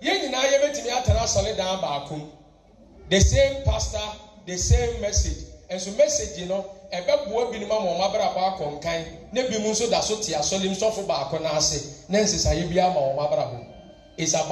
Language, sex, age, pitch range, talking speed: English, male, 40-59, 155-255 Hz, 75 wpm